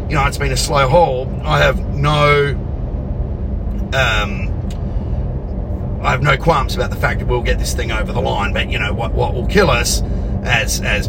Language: English